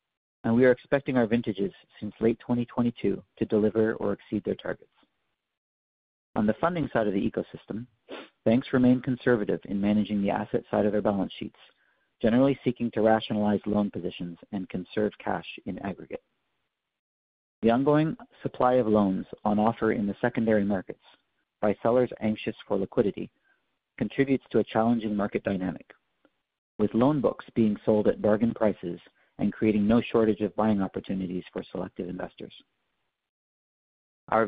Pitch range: 100-120 Hz